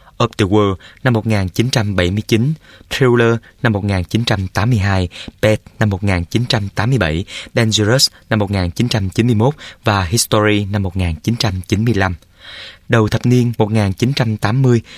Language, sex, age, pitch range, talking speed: Vietnamese, male, 20-39, 95-120 Hz, 90 wpm